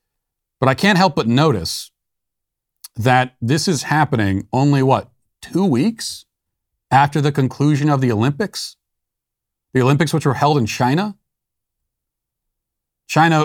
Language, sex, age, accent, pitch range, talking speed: English, male, 40-59, American, 120-165 Hz, 125 wpm